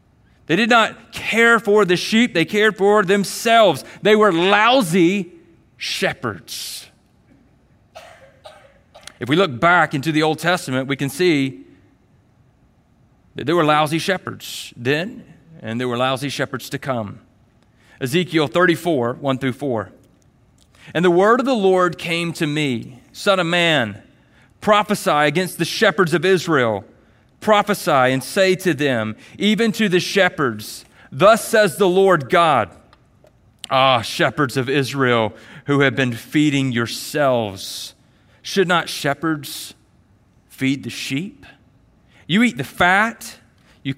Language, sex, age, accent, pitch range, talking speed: English, male, 40-59, American, 135-190 Hz, 130 wpm